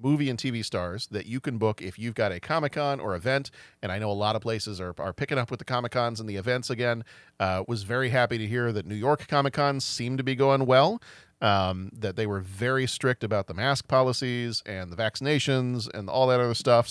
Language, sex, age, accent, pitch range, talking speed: English, male, 40-59, American, 105-130 Hz, 240 wpm